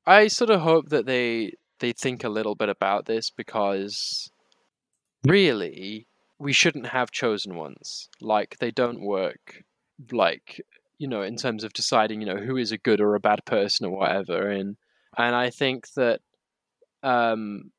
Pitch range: 105-125 Hz